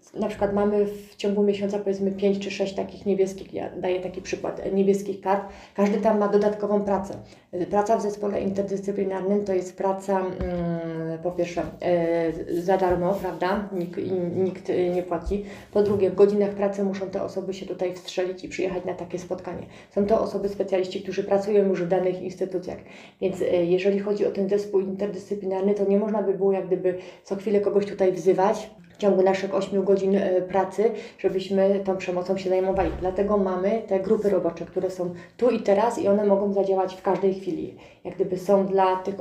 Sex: female